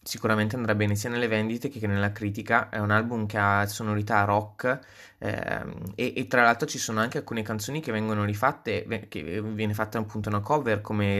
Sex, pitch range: male, 105-115 Hz